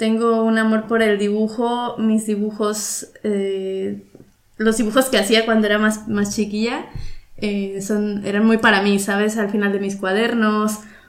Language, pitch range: Spanish, 205-245 Hz